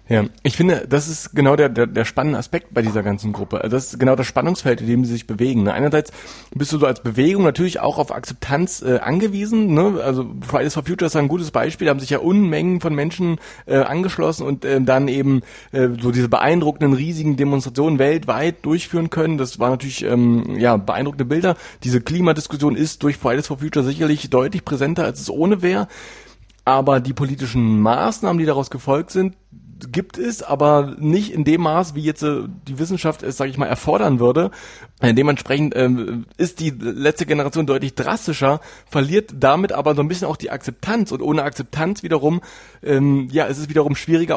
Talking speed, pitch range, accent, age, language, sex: 195 wpm, 130-160 Hz, German, 30-49, German, male